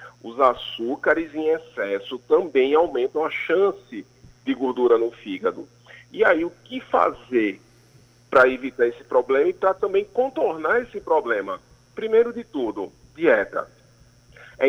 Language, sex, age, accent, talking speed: Portuguese, male, 40-59, Brazilian, 130 wpm